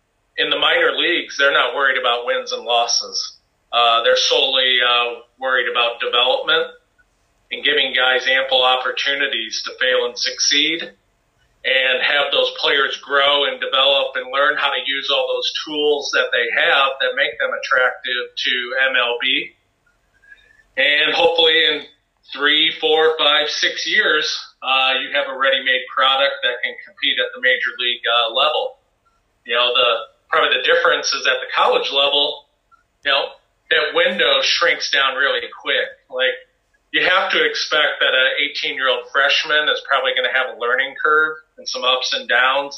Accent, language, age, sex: American, English, 40-59, male